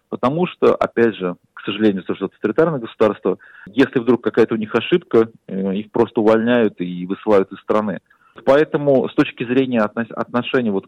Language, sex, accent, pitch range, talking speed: Russian, male, native, 105-135 Hz, 160 wpm